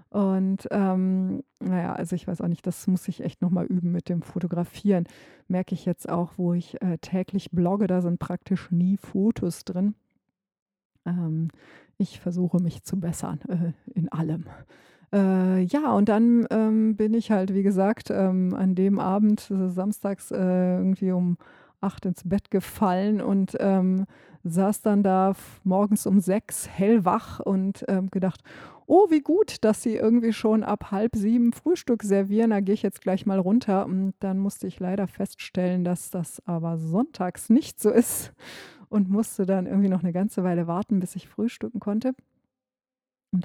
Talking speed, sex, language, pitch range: 165 wpm, female, English, 180-210 Hz